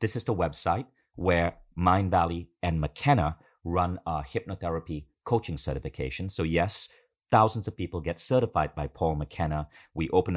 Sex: male